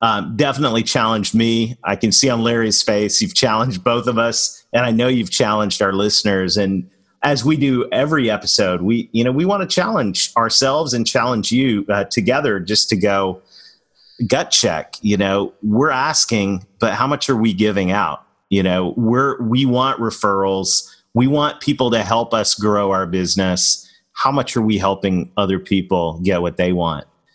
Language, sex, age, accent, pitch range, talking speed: English, male, 40-59, American, 105-130 Hz, 180 wpm